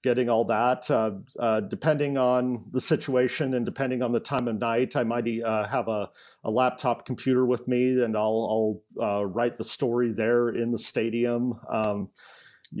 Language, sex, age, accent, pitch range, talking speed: English, male, 40-59, American, 115-130 Hz, 180 wpm